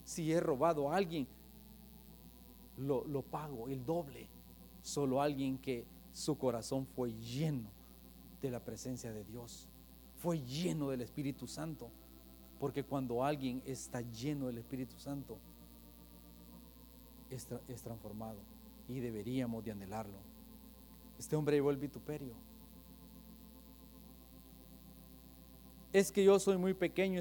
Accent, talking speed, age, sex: Mexican, 115 wpm, 40-59, male